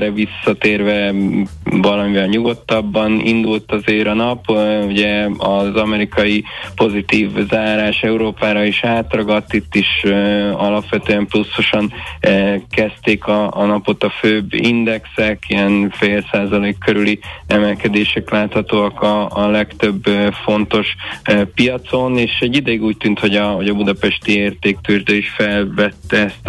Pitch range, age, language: 100-110 Hz, 20-39, Hungarian